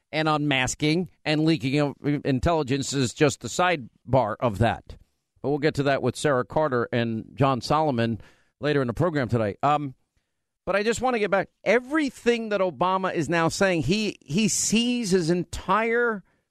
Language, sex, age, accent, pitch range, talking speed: English, male, 50-69, American, 140-185 Hz, 170 wpm